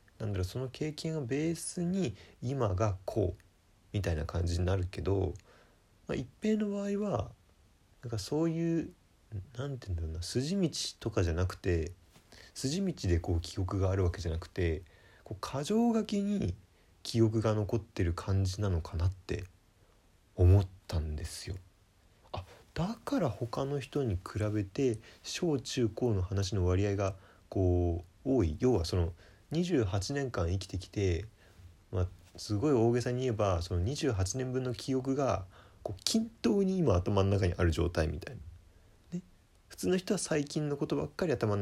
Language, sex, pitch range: Japanese, male, 90-135 Hz